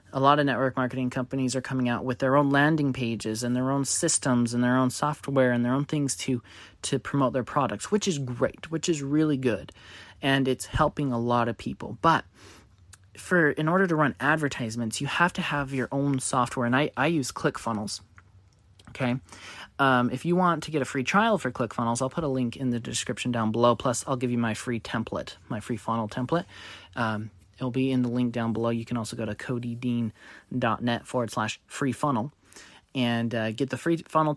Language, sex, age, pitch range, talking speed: English, male, 20-39, 120-145 Hz, 210 wpm